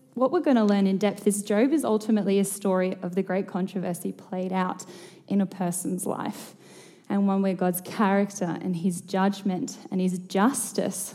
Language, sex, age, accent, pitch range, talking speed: English, female, 10-29, Australian, 190-225 Hz, 185 wpm